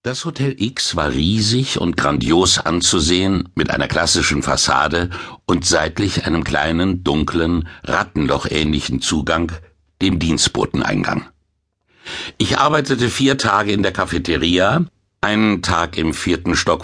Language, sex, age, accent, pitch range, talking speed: German, male, 60-79, German, 85-110 Hz, 120 wpm